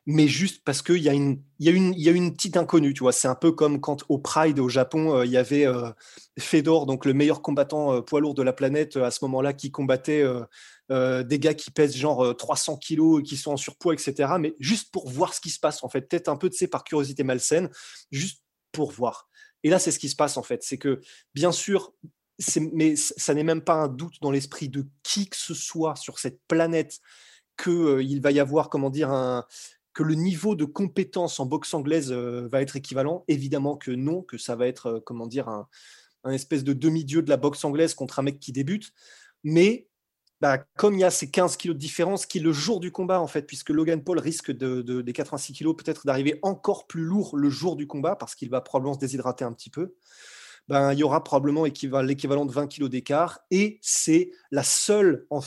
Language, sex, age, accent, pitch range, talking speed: French, male, 20-39, French, 135-165 Hz, 235 wpm